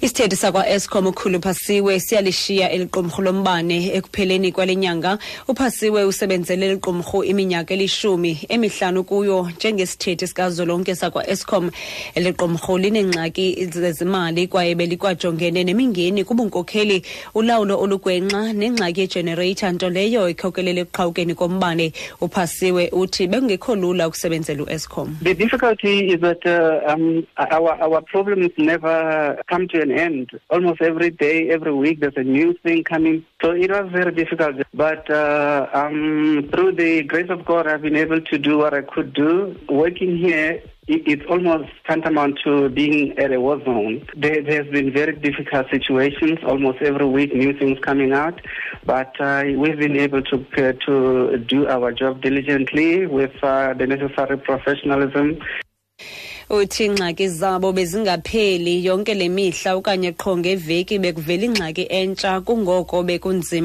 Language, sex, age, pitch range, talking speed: English, female, 30-49, 150-190 Hz, 140 wpm